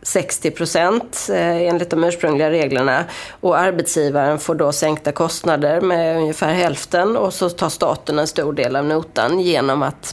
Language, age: Swedish, 30-49